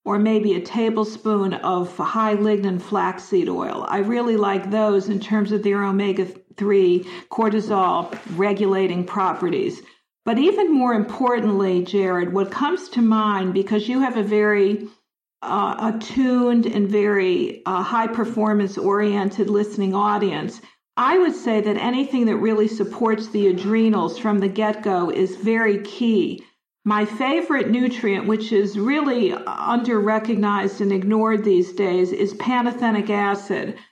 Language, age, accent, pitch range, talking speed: English, 50-69, American, 200-230 Hz, 130 wpm